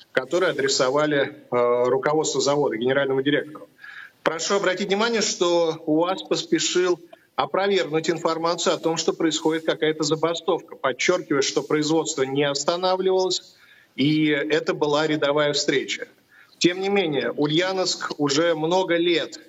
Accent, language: native, Russian